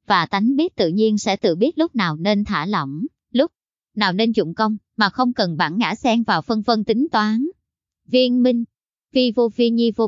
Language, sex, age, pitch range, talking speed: Vietnamese, male, 20-39, 185-235 Hz, 215 wpm